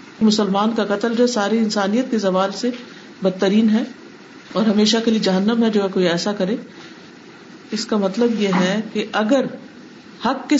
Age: 50-69